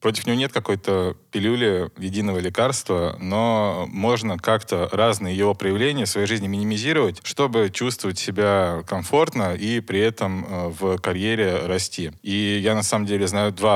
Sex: male